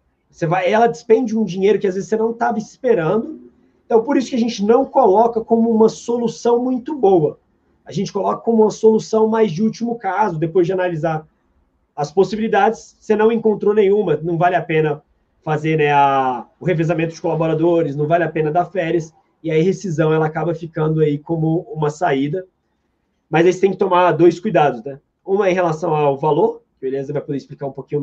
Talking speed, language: 200 wpm, Portuguese